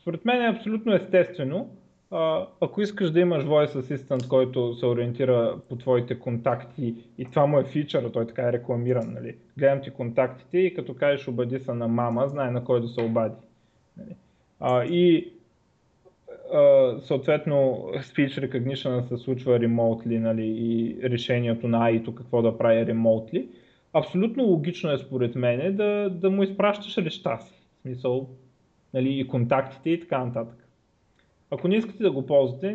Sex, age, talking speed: male, 20-39, 155 wpm